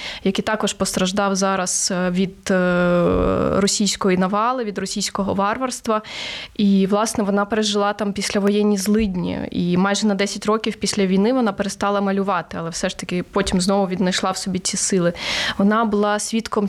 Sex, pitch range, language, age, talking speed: female, 190-215 Hz, Ukrainian, 20-39, 145 wpm